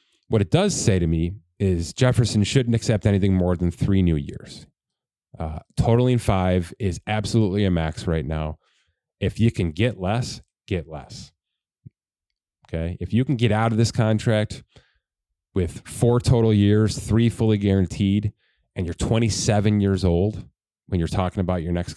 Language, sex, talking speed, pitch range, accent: English, male, 160 wpm, 90-115 Hz, American